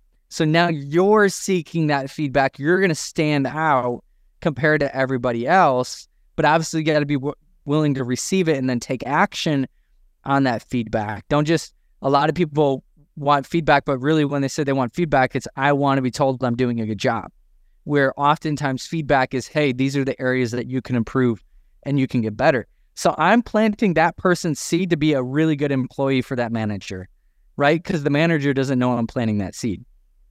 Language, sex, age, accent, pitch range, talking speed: English, male, 20-39, American, 130-160 Hz, 195 wpm